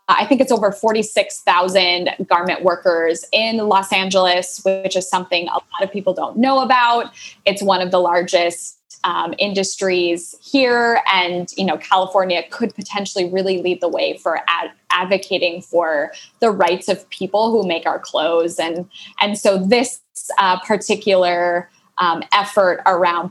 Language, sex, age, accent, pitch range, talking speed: English, female, 20-39, American, 175-210 Hz, 150 wpm